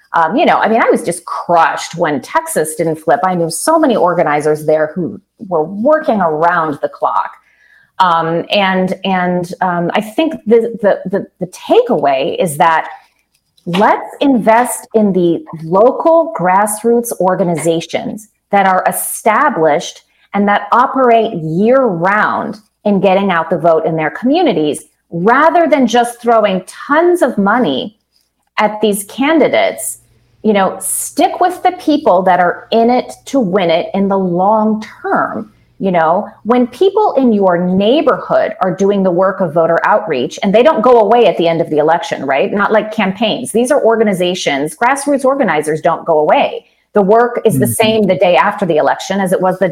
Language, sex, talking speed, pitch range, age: English, female, 170 wpm, 175-240 Hz, 30-49